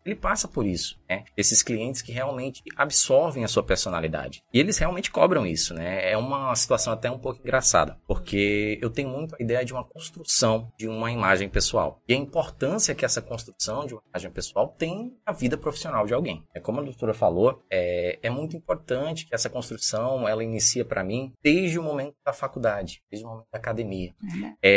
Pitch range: 100-145 Hz